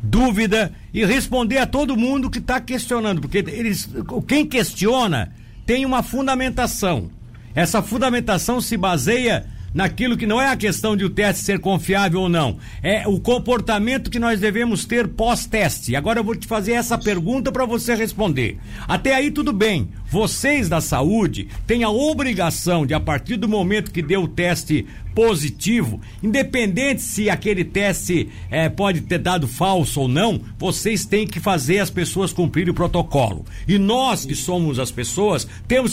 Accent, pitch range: Brazilian, 175-230 Hz